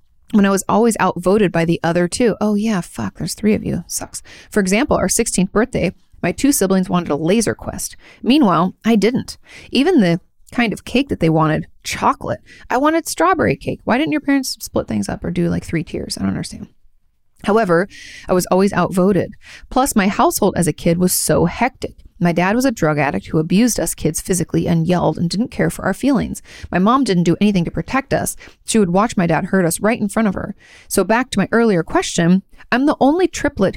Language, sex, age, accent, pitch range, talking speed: English, female, 30-49, American, 170-225 Hz, 220 wpm